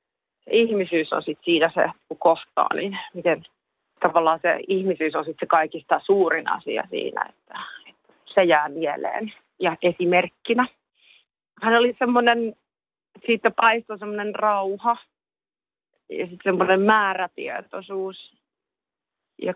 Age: 30-49